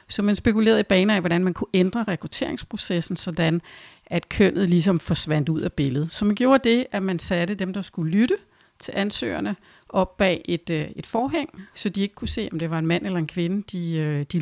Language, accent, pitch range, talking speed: Danish, native, 170-215 Hz, 215 wpm